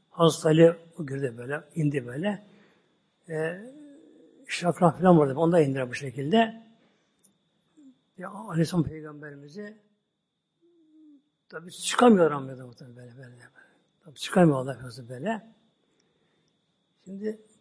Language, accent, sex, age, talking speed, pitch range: Turkish, native, male, 60-79, 100 wpm, 160-215 Hz